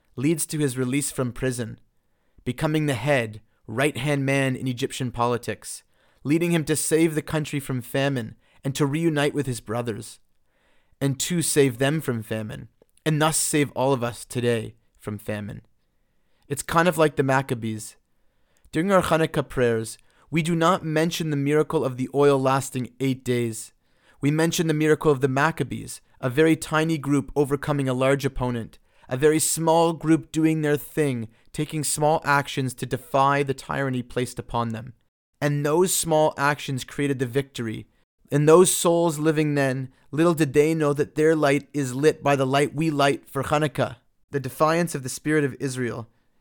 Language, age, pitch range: English, 30-49, 125-155 Hz